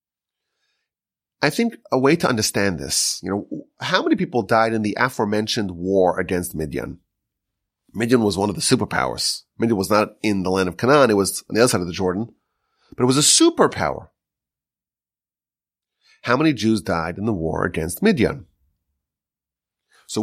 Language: English